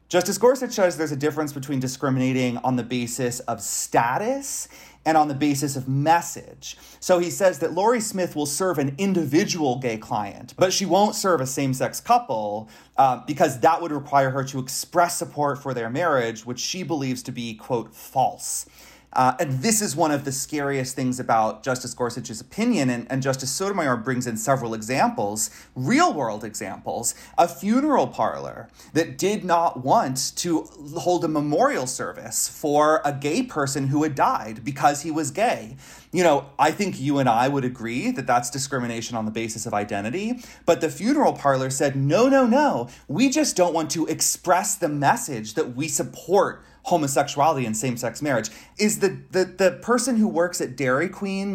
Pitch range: 130-180 Hz